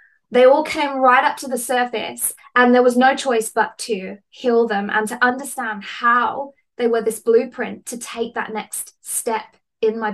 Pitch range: 215-265 Hz